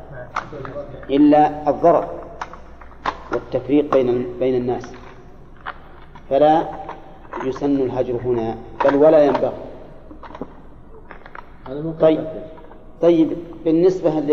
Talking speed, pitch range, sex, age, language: 65 wpm, 130-150 Hz, male, 40-59, Arabic